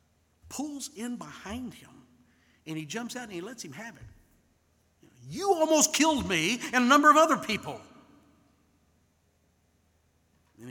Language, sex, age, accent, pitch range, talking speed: English, male, 50-69, American, 125-160 Hz, 140 wpm